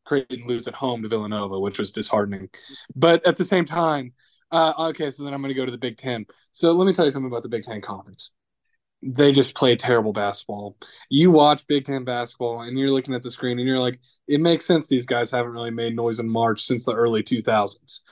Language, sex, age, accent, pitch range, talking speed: English, male, 20-39, American, 125-155 Hz, 235 wpm